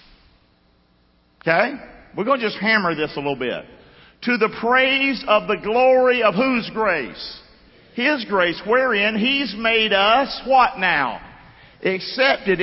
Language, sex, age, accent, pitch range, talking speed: English, male, 50-69, American, 190-250 Hz, 135 wpm